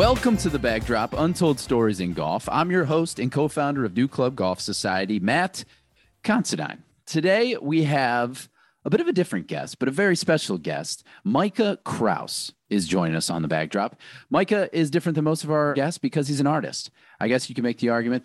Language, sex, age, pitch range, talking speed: English, male, 40-59, 100-140 Hz, 200 wpm